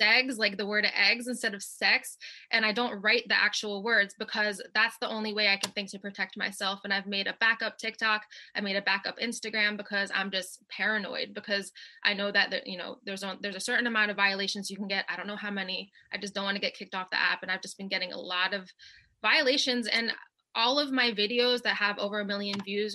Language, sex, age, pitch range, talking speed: English, female, 20-39, 200-230 Hz, 240 wpm